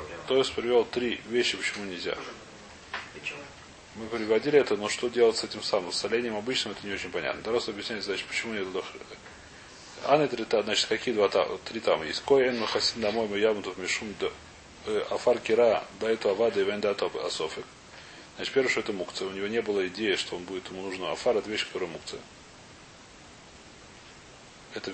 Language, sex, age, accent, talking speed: Russian, male, 30-49, native, 140 wpm